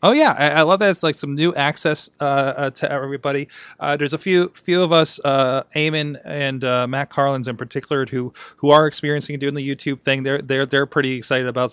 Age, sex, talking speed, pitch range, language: 30-49, male, 225 wpm, 130-165 Hz, English